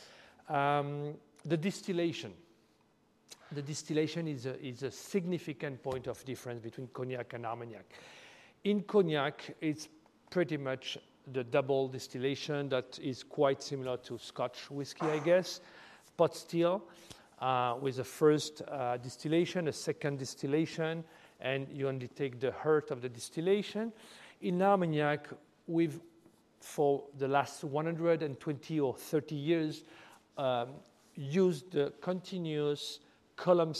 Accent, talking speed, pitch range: French, 125 wpm, 135-165 Hz